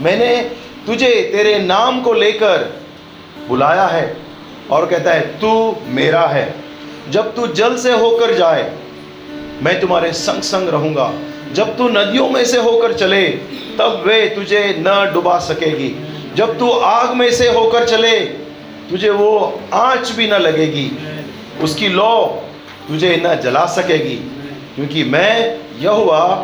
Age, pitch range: 40-59, 160-230 Hz